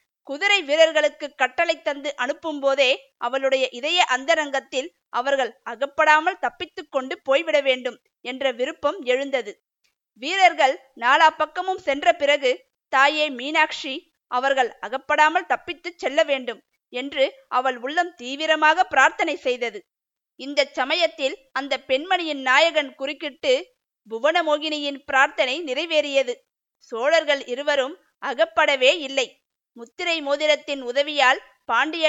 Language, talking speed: Tamil, 95 wpm